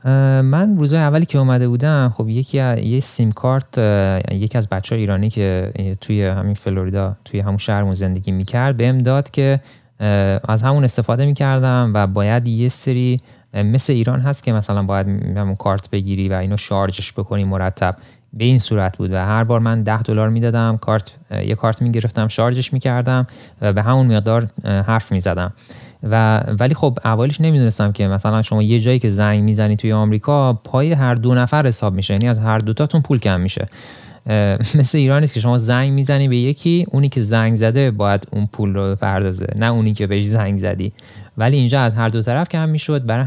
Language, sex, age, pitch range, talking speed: Persian, male, 30-49, 100-130 Hz, 185 wpm